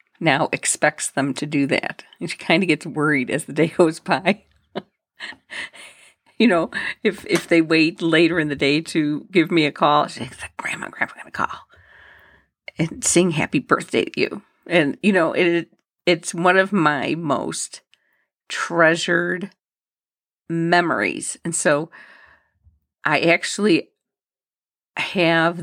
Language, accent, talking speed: English, American, 140 wpm